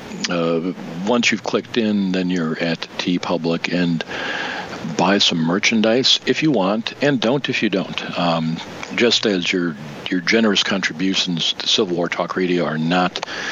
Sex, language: male, English